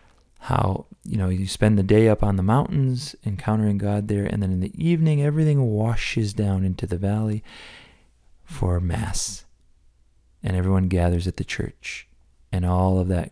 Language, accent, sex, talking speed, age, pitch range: English, American, male, 165 wpm, 30-49, 95-135 Hz